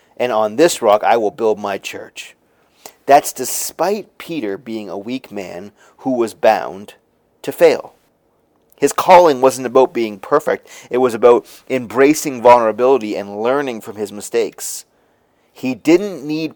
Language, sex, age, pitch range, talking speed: English, male, 30-49, 115-165 Hz, 145 wpm